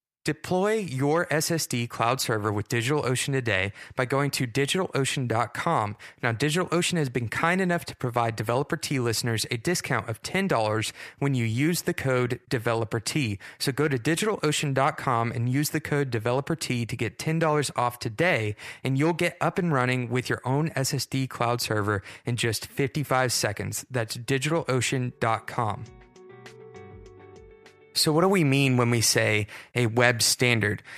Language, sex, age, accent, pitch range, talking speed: English, male, 20-39, American, 115-150 Hz, 145 wpm